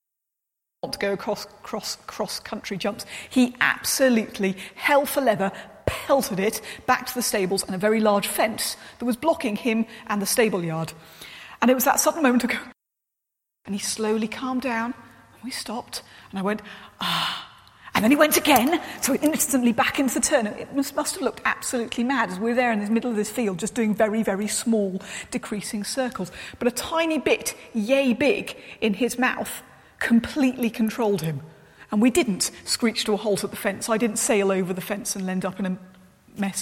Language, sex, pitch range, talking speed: English, female, 205-260 Hz, 195 wpm